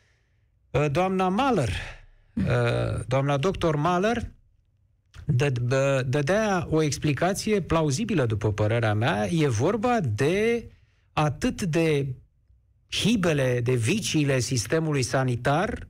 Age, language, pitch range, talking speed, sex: 50-69, Romanian, 120-190 Hz, 85 wpm, male